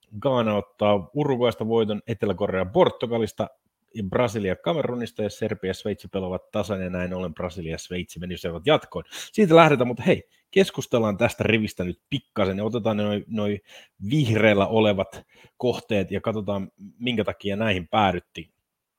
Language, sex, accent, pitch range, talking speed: Finnish, male, native, 90-110 Hz, 135 wpm